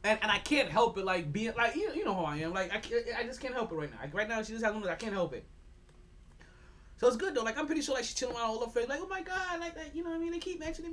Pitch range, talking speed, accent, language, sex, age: 190-300 Hz, 345 wpm, American, English, male, 30-49